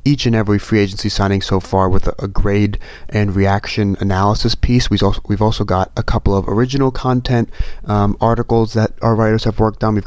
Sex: male